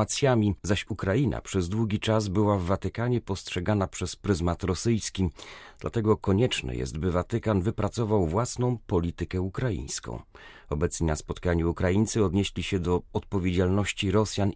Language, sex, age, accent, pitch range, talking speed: Polish, male, 40-59, native, 90-115 Hz, 125 wpm